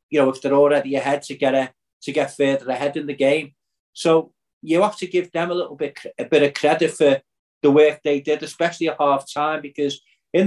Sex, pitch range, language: male, 135-155 Hz, English